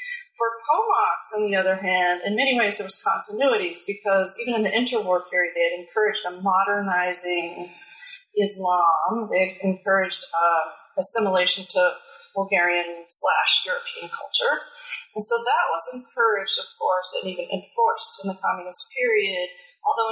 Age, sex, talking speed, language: 40-59, female, 145 wpm, English